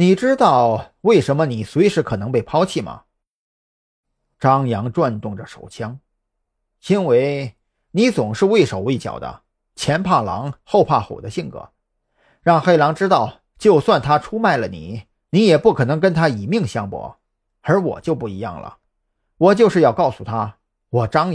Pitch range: 110-165 Hz